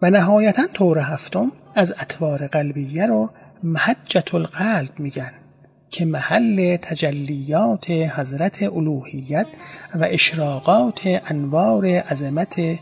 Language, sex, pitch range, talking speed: Persian, male, 150-205 Hz, 95 wpm